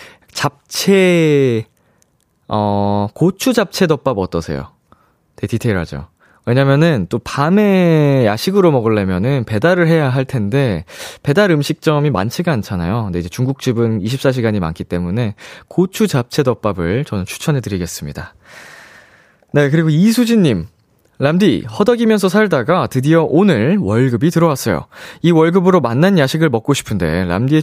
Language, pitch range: Korean, 105-160 Hz